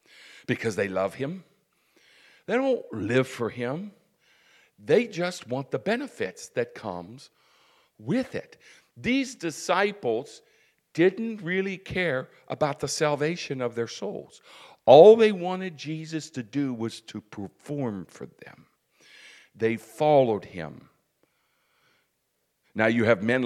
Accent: American